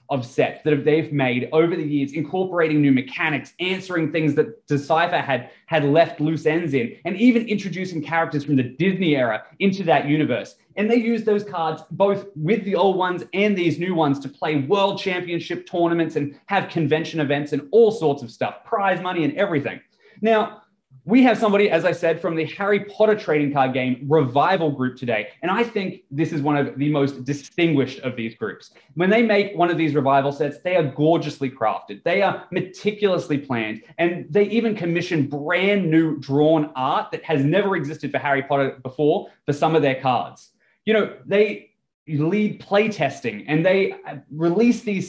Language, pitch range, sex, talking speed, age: English, 145-195 Hz, male, 190 wpm, 20-39